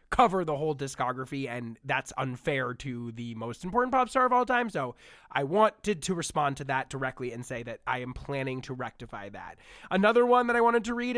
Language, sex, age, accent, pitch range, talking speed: English, male, 20-39, American, 145-225 Hz, 215 wpm